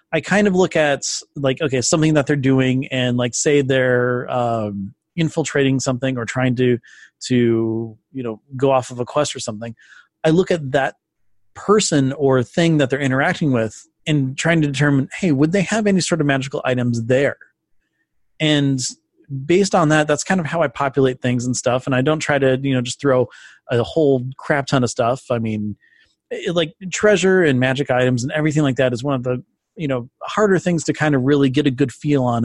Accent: American